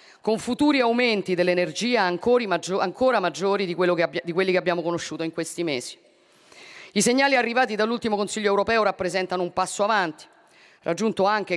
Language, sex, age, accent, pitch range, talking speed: Italian, female, 40-59, native, 165-210 Hz, 135 wpm